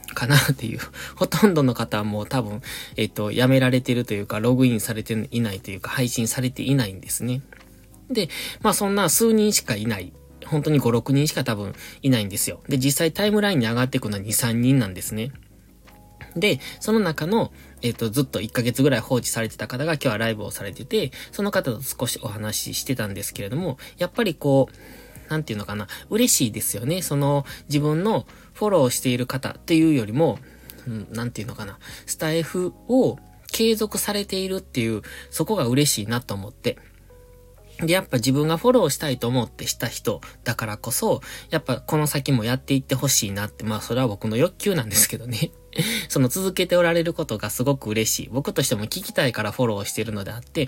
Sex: male